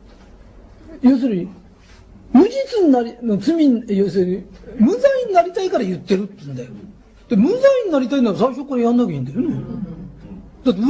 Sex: male